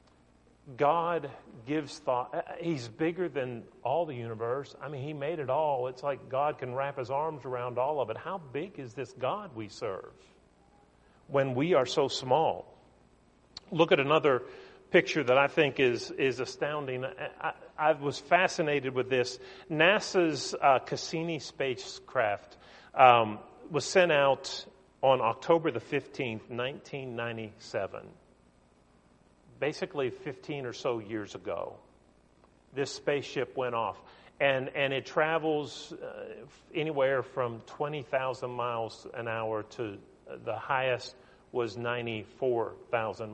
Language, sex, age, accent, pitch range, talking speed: English, male, 40-59, American, 105-155 Hz, 130 wpm